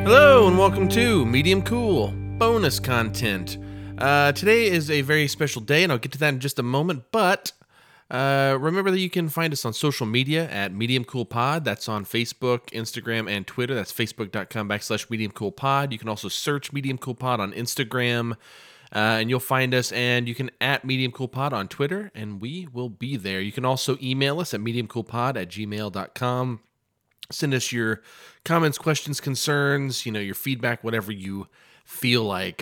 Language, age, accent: English, 30-49, American